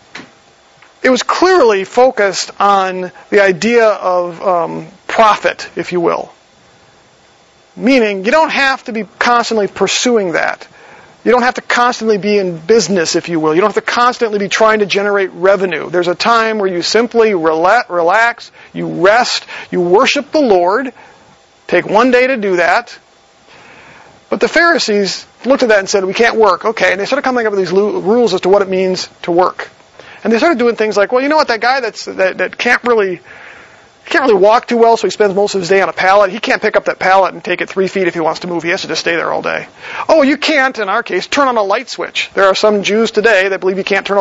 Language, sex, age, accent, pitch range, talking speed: English, male, 40-59, American, 190-240 Hz, 225 wpm